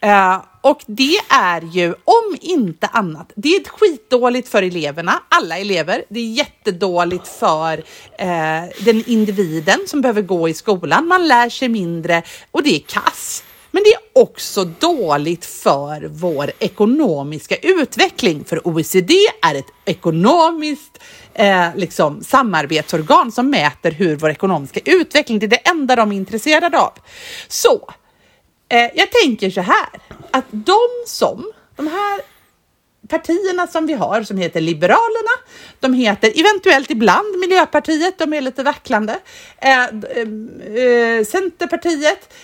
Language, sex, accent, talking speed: Swedish, female, native, 130 wpm